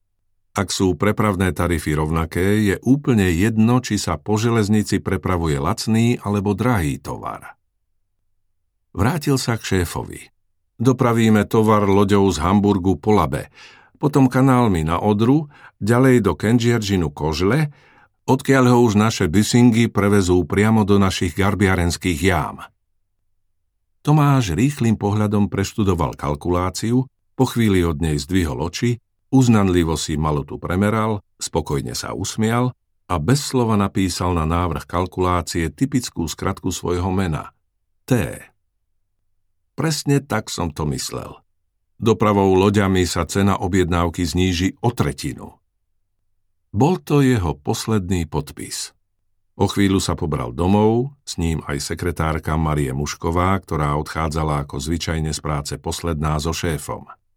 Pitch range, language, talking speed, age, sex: 85-110 Hz, Slovak, 120 wpm, 50-69, male